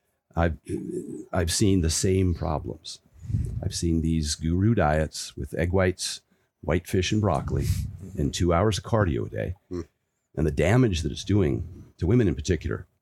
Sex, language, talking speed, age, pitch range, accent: male, English, 160 wpm, 40-59, 75-100 Hz, American